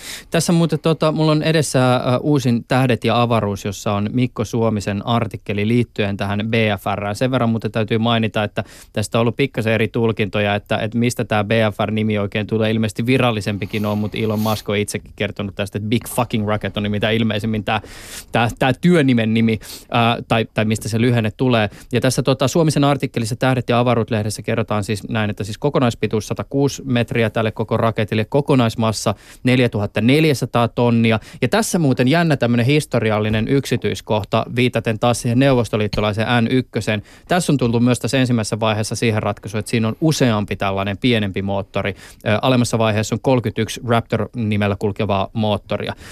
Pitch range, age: 105-125 Hz, 20-39